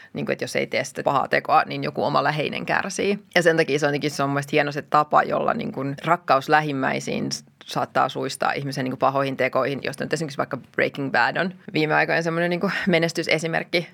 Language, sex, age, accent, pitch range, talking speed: Finnish, female, 20-39, native, 135-170 Hz, 170 wpm